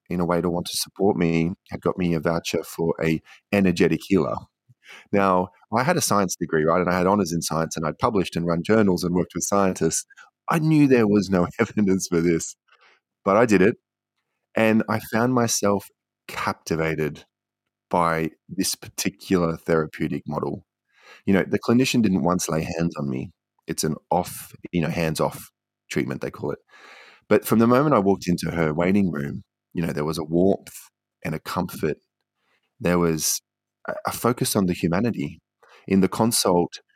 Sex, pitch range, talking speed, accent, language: male, 85-100 Hz, 180 wpm, Australian, English